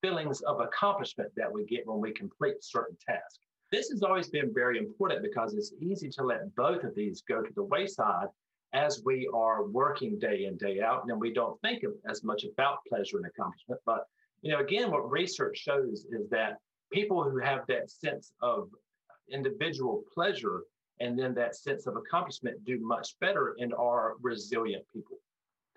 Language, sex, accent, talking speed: English, male, American, 180 wpm